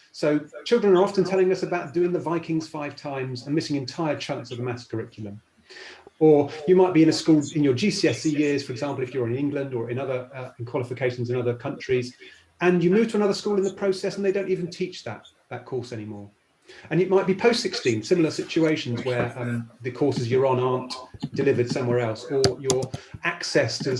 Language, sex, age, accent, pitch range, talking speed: English, male, 30-49, British, 120-160 Hz, 215 wpm